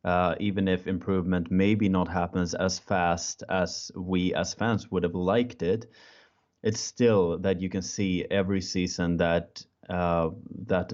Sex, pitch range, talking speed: male, 90-95 Hz, 155 wpm